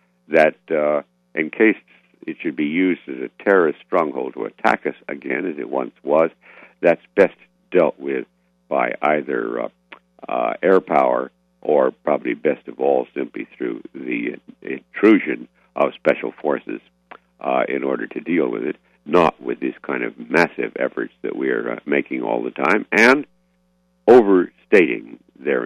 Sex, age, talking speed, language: male, 60-79, 155 wpm, English